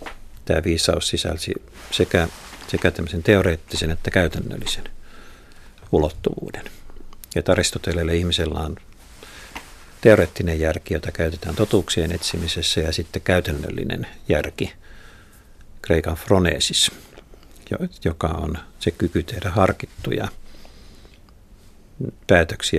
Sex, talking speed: male, 85 wpm